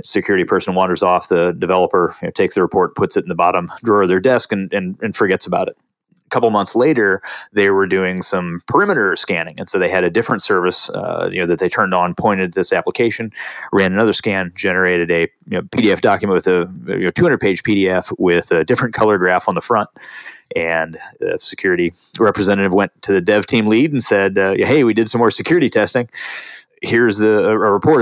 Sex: male